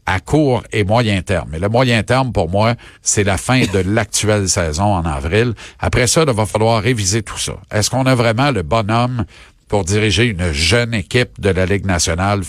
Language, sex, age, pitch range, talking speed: French, male, 50-69, 100-130 Hz, 200 wpm